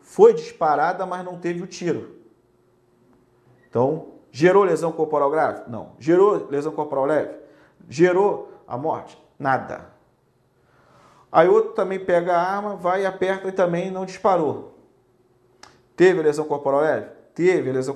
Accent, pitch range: Brazilian, 135-170 Hz